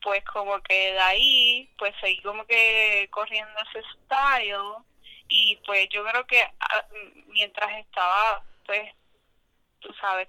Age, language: 20-39, Spanish